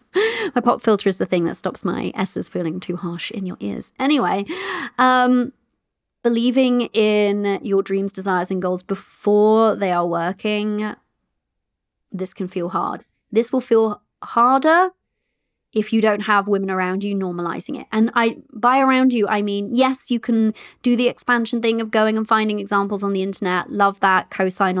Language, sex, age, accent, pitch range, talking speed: English, female, 20-39, British, 190-235 Hz, 170 wpm